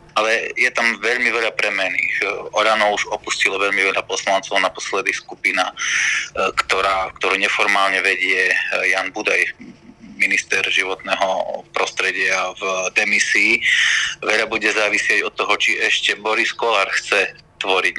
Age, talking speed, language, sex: 30-49, 125 wpm, Slovak, male